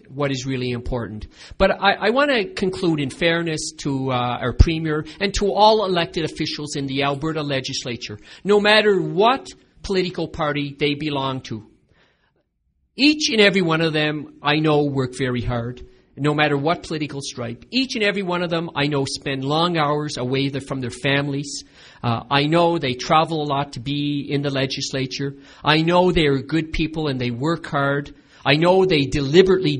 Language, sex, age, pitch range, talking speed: English, male, 50-69, 135-180 Hz, 175 wpm